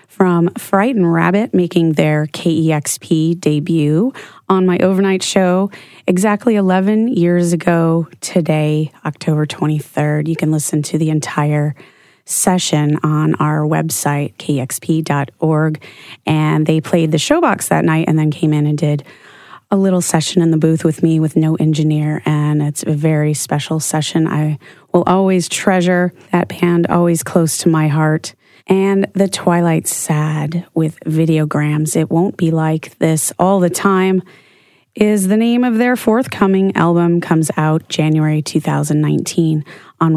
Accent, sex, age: American, female, 30-49